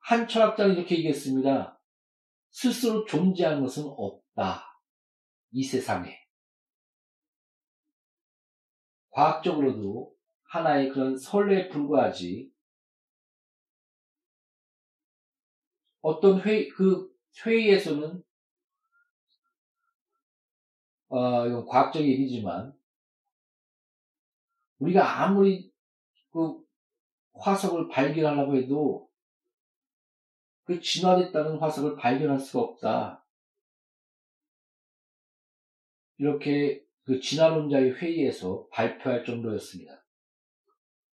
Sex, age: male, 40-59